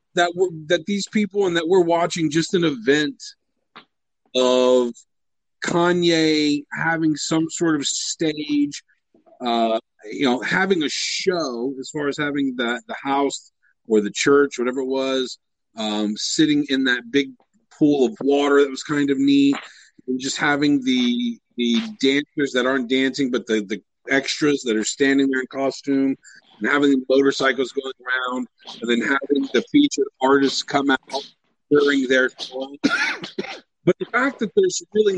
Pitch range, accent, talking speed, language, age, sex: 130-165 Hz, American, 155 wpm, English, 40-59, male